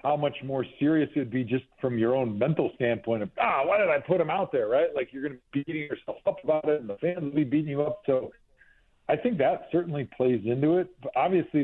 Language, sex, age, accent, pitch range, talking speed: English, male, 40-59, American, 115-150 Hz, 265 wpm